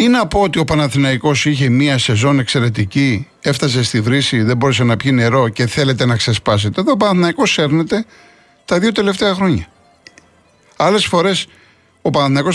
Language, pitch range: Greek, 120-170 Hz